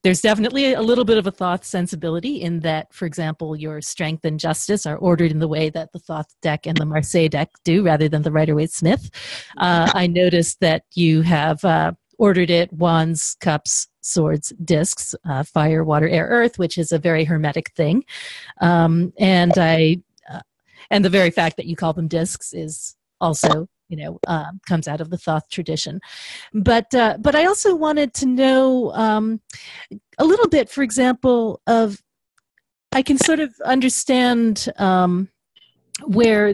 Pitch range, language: 165-220 Hz, English